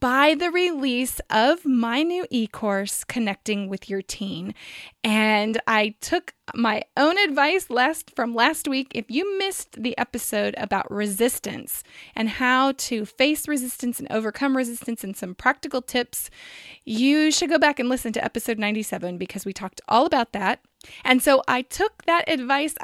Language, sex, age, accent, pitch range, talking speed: English, female, 20-39, American, 215-285 Hz, 160 wpm